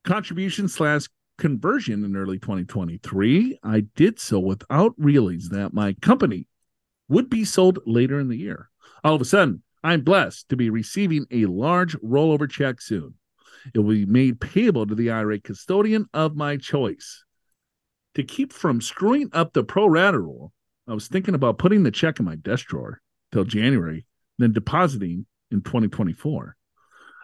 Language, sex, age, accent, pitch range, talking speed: English, male, 50-69, American, 115-175 Hz, 160 wpm